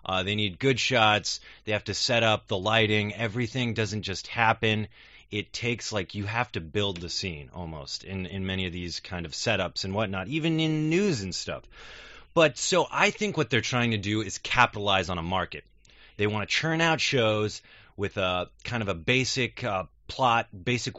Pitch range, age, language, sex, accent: 105-140 Hz, 30-49, Chinese, male, American